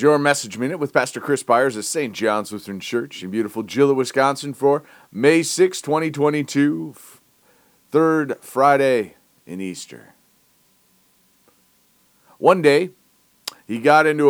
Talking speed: 125 wpm